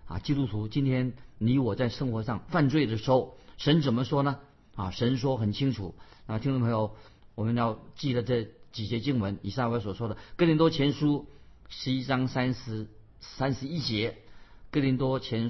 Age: 50-69